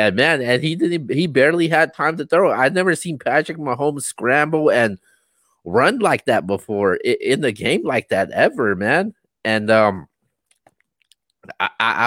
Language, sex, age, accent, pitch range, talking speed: English, male, 30-49, American, 110-145 Hz, 155 wpm